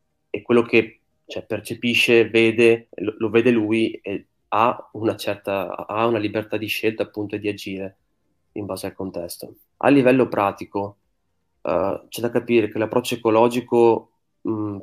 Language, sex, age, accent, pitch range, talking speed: Italian, male, 20-39, native, 105-120 Hz, 150 wpm